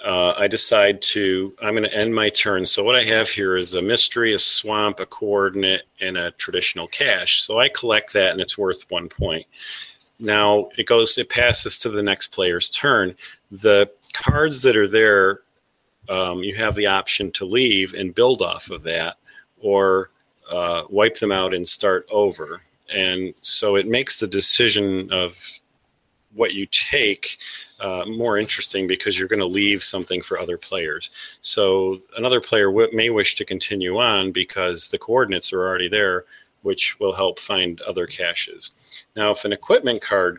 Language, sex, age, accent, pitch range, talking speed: English, male, 40-59, American, 95-115 Hz, 170 wpm